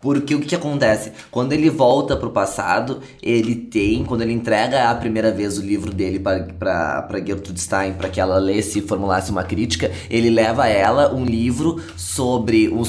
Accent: Brazilian